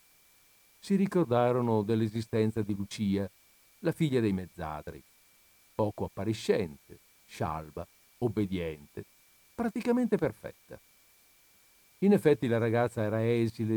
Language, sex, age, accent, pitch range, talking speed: Italian, male, 50-69, native, 95-125 Hz, 90 wpm